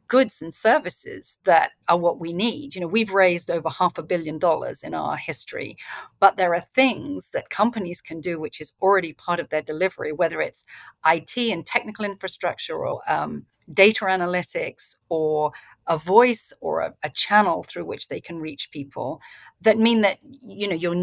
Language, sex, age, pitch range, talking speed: English, female, 40-59, 165-210 Hz, 185 wpm